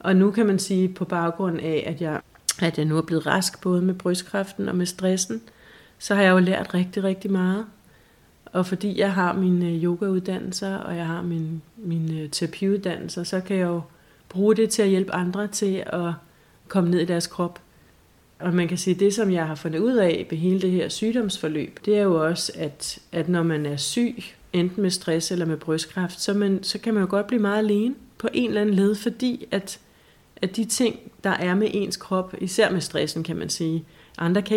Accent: native